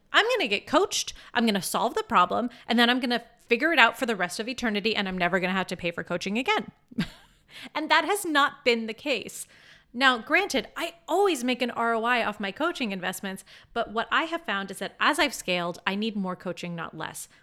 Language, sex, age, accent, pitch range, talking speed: English, female, 30-49, American, 185-255 Hz, 240 wpm